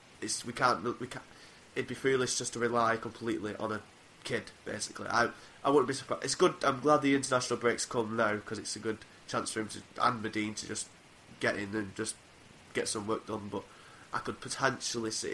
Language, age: English, 20-39